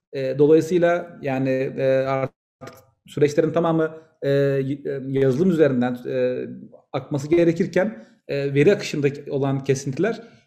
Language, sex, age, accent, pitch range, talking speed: Turkish, male, 40-59, native, 140-175 Hz, 75 wpm